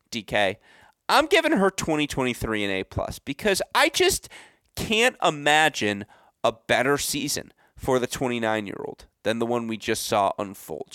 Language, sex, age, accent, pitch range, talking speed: English, male, 30-49, American, 110-145 Hz, 160 wpm